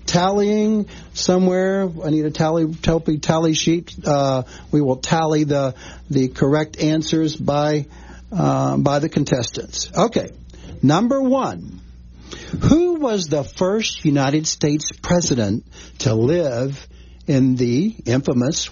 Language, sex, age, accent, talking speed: English, male, 60-79, American, 115 wpm